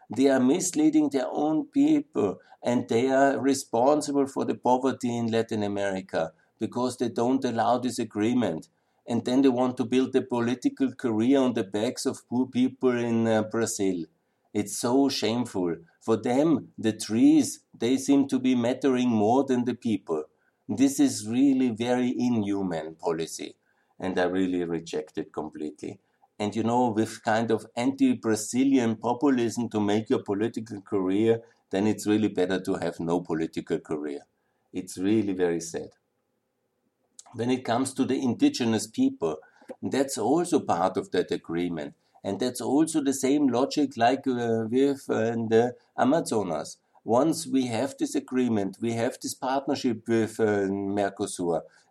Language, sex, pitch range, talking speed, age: German, male, 105-130 Hz, 155 wpm, 60-79